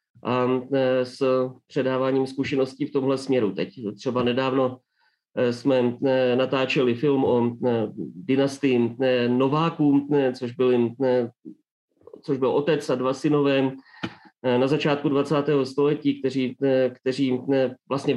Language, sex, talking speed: Czech, male, 95 wpm